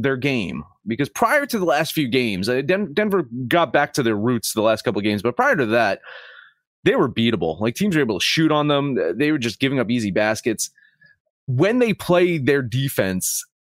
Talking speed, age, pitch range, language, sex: 215 wpm, 30-49, 110-165 Hz, English, male